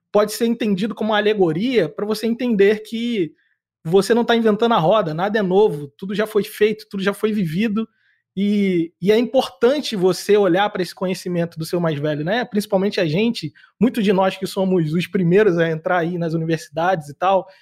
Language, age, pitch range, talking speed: English, 20-39, 185-230 Hz, 200 wpm